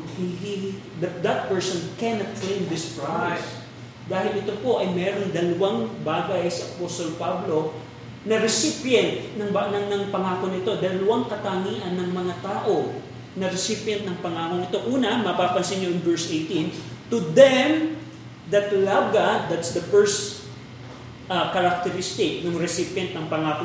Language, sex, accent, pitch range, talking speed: Filipino, male, native, 175-220 Hz, 140 wpm